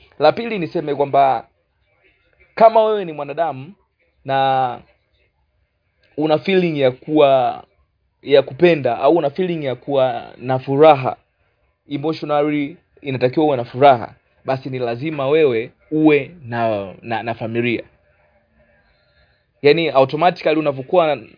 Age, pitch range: 30-49, 120-155 Hz